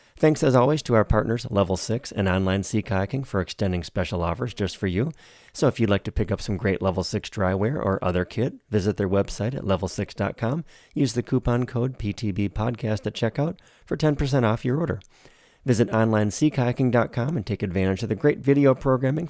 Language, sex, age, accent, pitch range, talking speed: English, male, 30-49, American, 95-130 Hz, 190 wpm